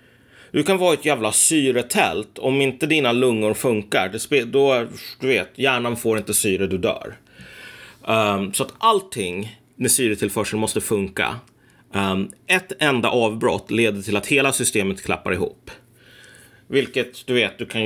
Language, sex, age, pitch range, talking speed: Swedish, male, 30-49, 100-125 Hz, 155 wpm